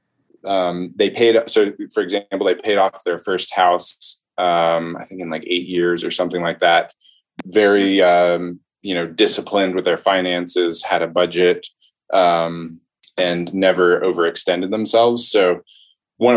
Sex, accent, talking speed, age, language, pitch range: male, American, 150 wpm, 20-39, English, 85-115 Hz